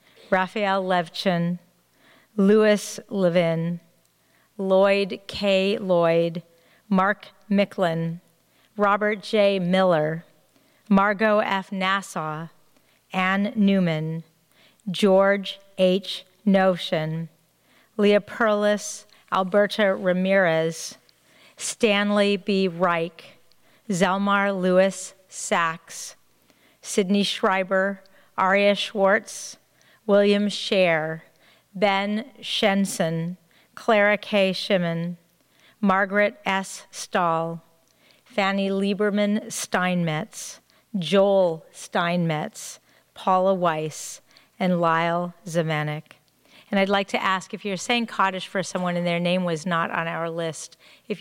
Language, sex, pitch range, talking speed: English, female, 170-200 Hz, 85 wpm